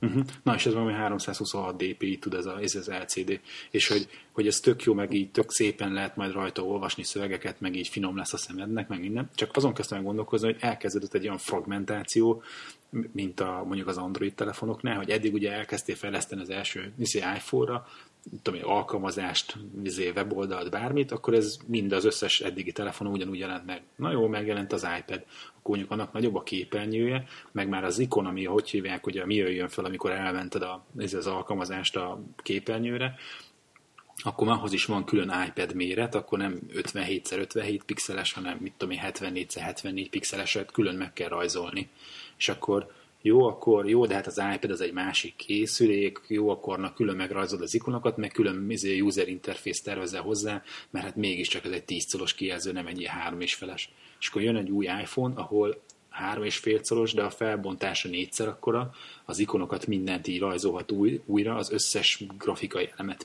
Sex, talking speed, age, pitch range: male, 180 wpm, 30-49, 95-115 Hz